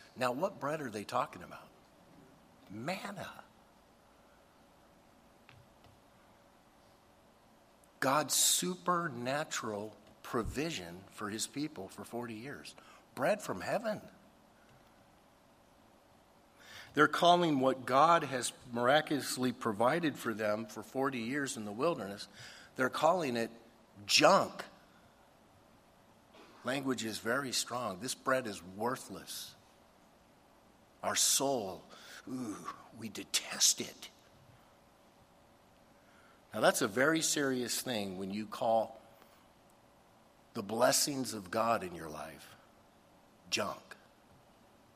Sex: male